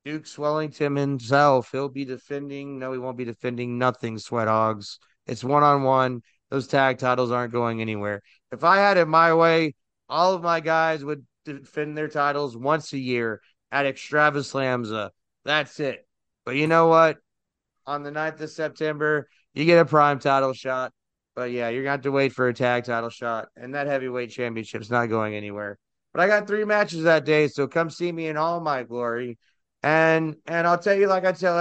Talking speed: 190 wpm